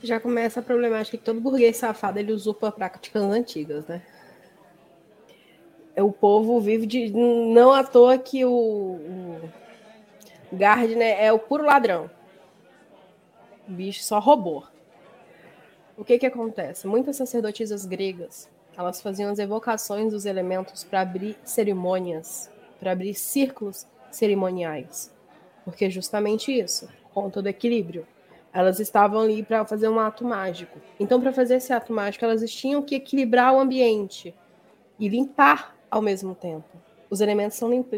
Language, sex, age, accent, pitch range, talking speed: Portuguese, female, 20-39, Brazilian, 195-230 Hz, 135 wpm